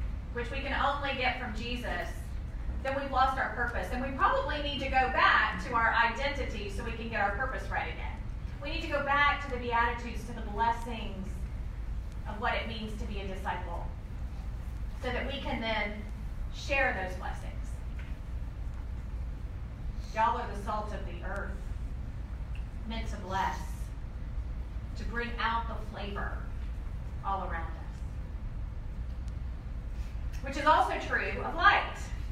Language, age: English, 40-59